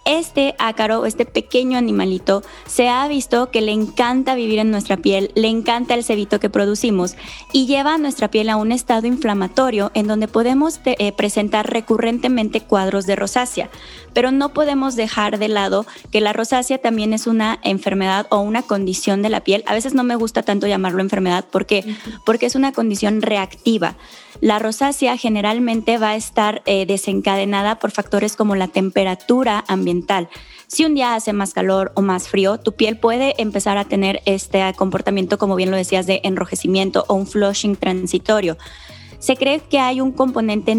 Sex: female